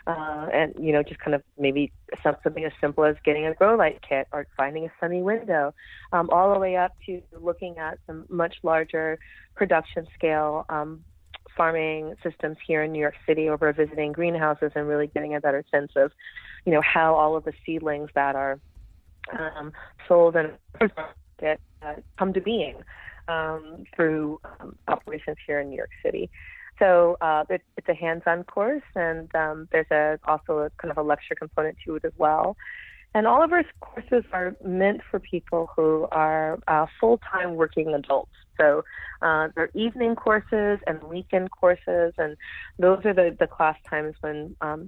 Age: 30-49